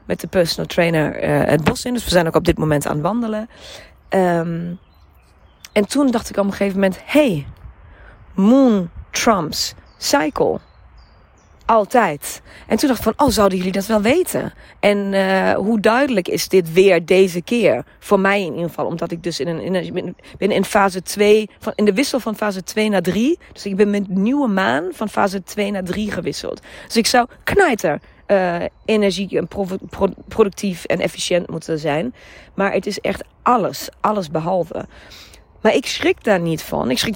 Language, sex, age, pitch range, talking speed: Dutch, female, 40-59, 170-215 Hz, 190 wpm